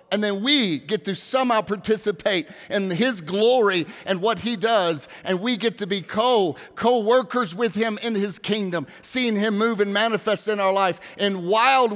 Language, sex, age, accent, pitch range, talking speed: English, male, 50-69, American, 180-230 Hz, 175 wpm